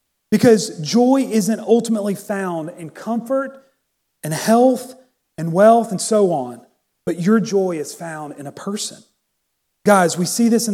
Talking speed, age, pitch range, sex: 150 wpm, 40-59, 180-225 Hz, male